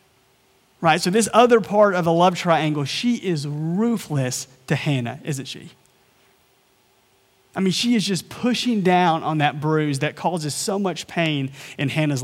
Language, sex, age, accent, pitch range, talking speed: English, male, 30-49, American, 140-205 Hz, 160 wpm